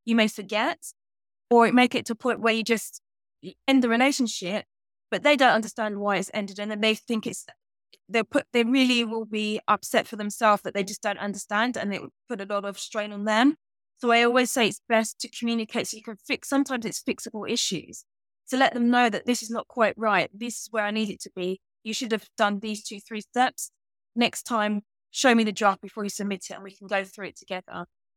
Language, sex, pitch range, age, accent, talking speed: English, female, 205-235 Hz, 20-39, British, 235 wpm